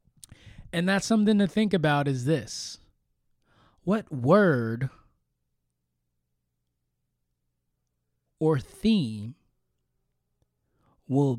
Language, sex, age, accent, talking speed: English, male, 20-39, American, 70 wpm